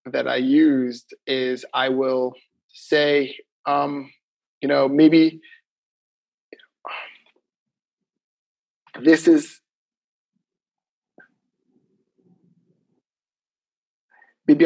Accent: American